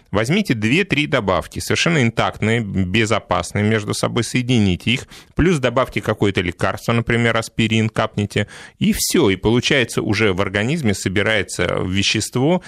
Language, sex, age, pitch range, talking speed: Russian, male, 30-49, 105-135 Hz, 125 wpm